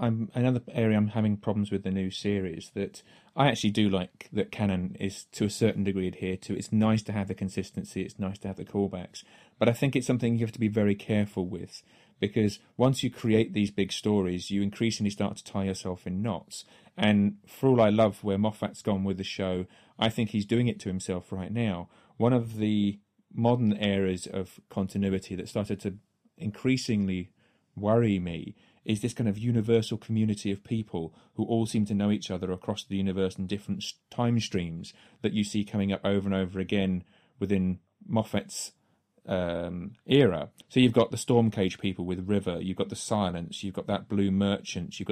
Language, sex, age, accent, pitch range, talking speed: English, male, 30-49, British, 95-110 Hz, 195 wpm